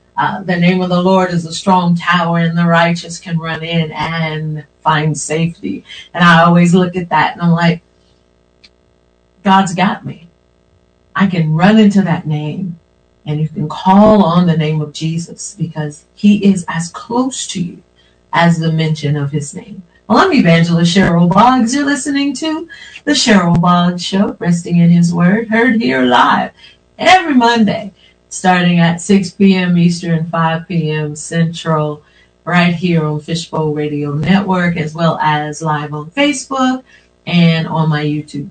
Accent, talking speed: American, 160 wpm